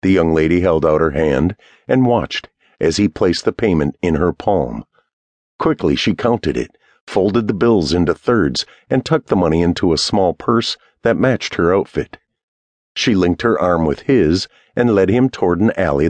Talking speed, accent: 185 wpm, American